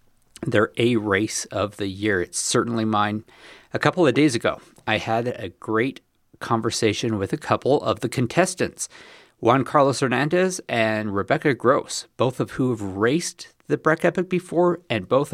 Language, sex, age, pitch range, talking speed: English, male, 50-69, 110-145 Hz, 165 wpm